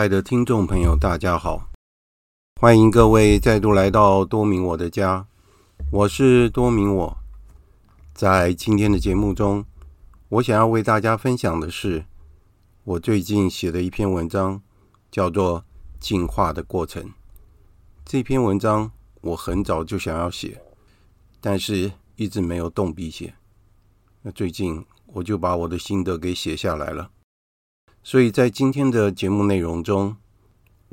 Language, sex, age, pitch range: Chinese, male, 50-69, 90-105 Hz